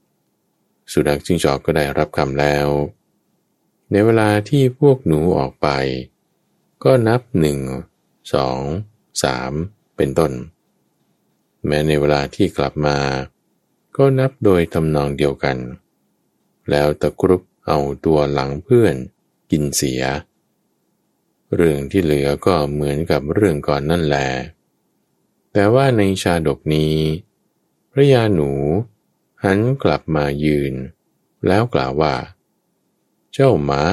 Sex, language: male, Thai